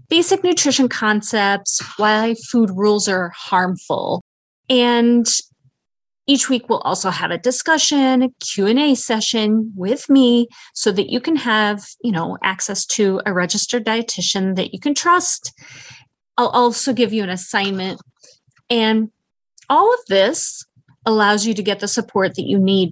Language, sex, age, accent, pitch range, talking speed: English, female, 30-49, American, 195-260 Hz, 145 wpm